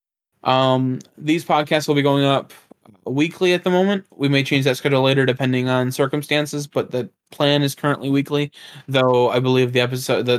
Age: 20-39